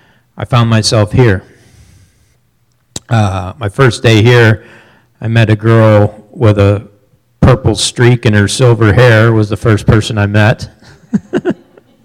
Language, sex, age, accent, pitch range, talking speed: English, male, 40-59, American, 100-120 Hz, 135 wpm